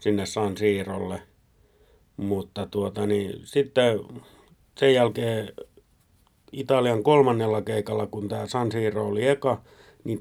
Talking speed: 110 wpm